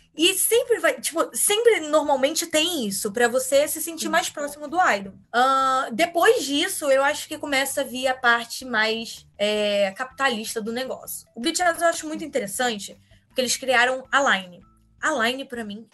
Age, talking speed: 20-39, 175 wpm